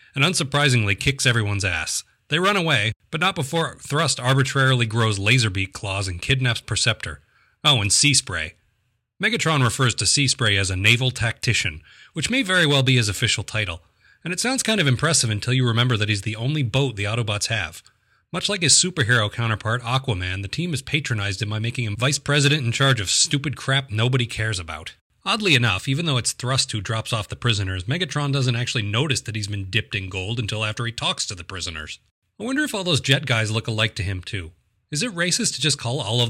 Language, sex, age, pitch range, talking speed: English, male, 30-49, 105-135 Hz, 210 wpm